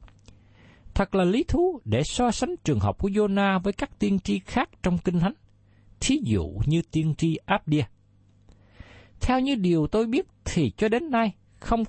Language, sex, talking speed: Vietnamese, male, 175 wpm